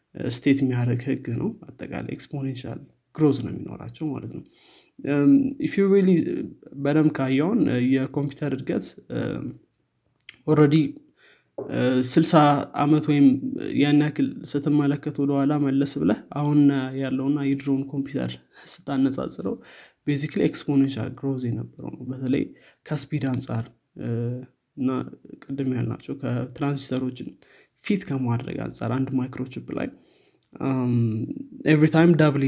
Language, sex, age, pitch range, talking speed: Amharic, male, 20-39, 130-150 Hz, 90 wpm